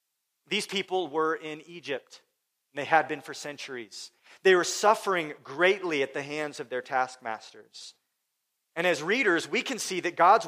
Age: 40-59